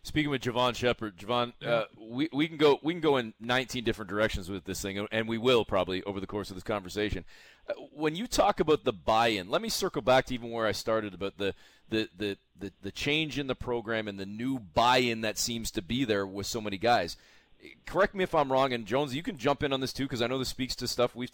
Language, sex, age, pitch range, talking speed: English, male, 30-49, 115-150 Hz, 255 wpm